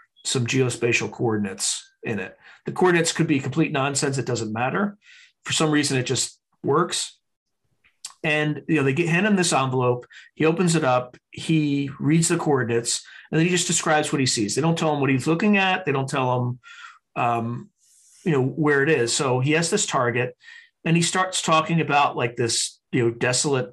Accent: American